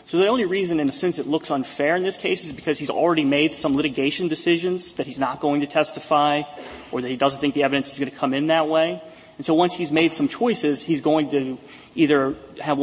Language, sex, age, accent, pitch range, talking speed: English, male, 30-49, American, 135-155 Hz, 250 wpm